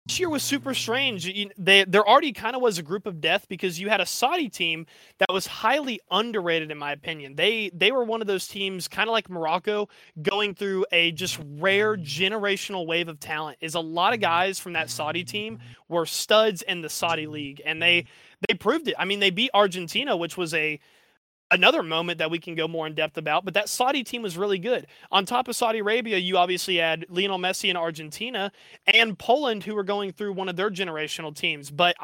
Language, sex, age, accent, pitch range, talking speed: English, male, 20-39, American, 170-215 Hz, 220 wpm